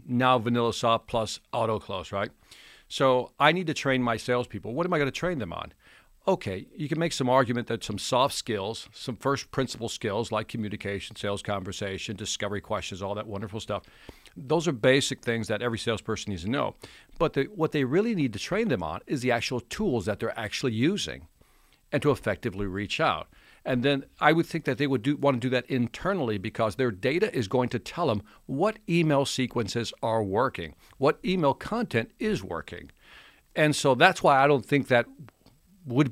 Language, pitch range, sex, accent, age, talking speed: English, 110-140 Hz, male, American, 50-69, 195 wpm